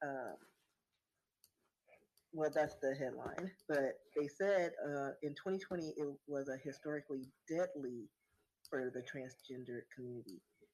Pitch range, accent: 130-145 Hz, American